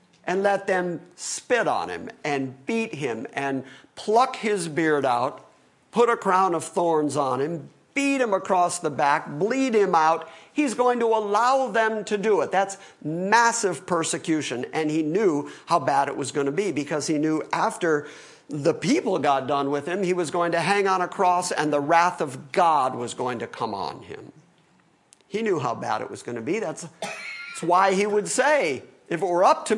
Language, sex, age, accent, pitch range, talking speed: English, male, 50-69, American, 150-215 Hz, 200 wpm